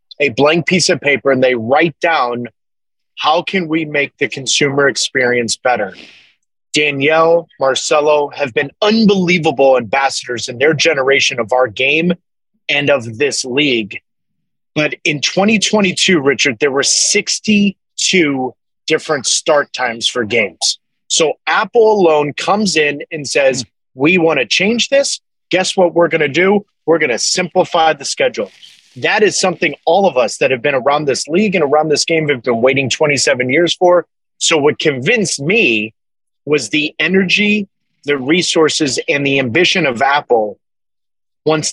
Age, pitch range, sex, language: 30-49, 140-175 Hz, male, English